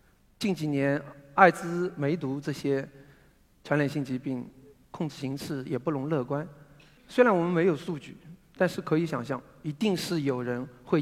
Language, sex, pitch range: Chinese, male, 140-190 Hz